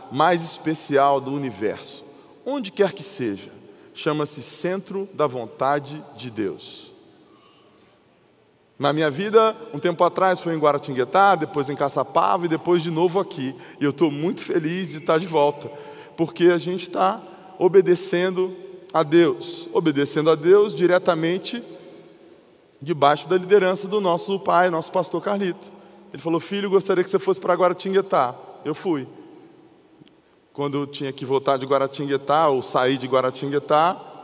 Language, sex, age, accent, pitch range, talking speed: Portuguese, male, 20-39, Brazilian, 145-190 Hz, 145 wpm